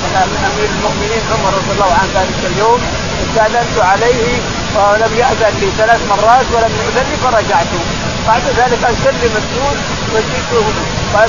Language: Arabic